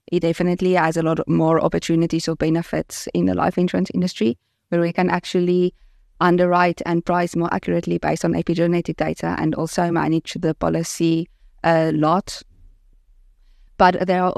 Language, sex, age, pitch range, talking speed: English, female, 20-39, 160-175 Hz, 155 wpm